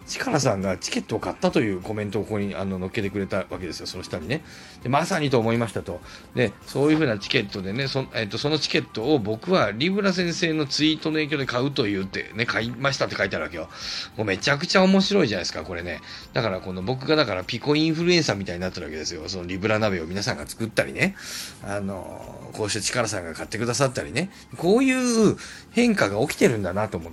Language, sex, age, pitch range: Japanese, male, 40-59, 95-155 Hz